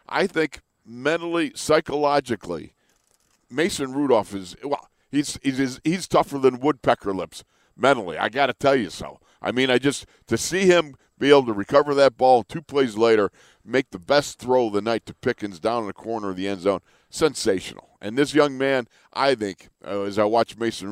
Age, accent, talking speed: 50-69, American, 200 wpm